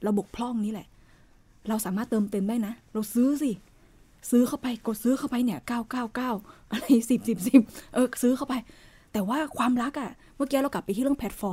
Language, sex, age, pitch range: Thai, female, 20-39, 205-255 Hz